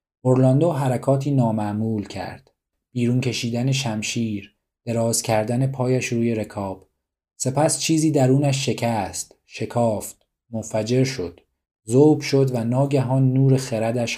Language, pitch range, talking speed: Persian, 110-135 Hz, 105 wpm